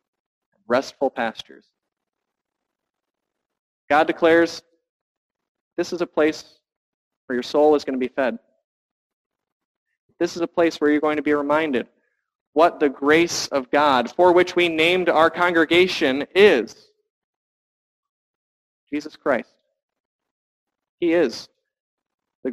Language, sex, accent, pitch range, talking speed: English, male, American, 150-235 Hz, 115 wpm